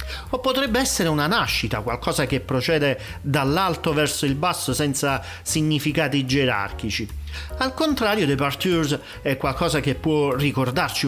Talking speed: 125 wpm